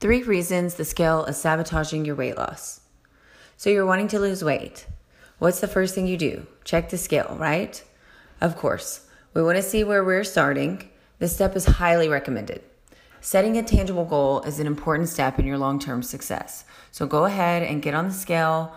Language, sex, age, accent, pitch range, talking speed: English, female, 30-49, American, 150-190 Hz, 185 wpm